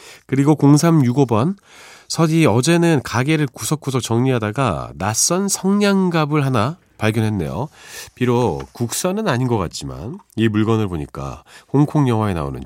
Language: Korean